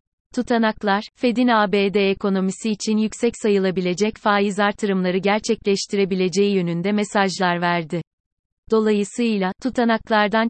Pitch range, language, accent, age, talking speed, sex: 190-220 Hz, Turkish, native, 30-49, 85 wpm, female